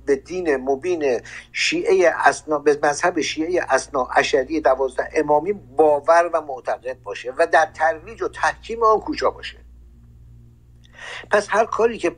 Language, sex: Persian, male